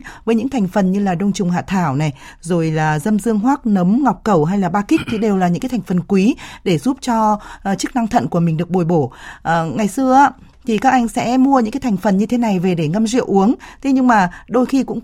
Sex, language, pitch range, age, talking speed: female, Vietnamese, 180-240 Hz, 20-39, 265 wpm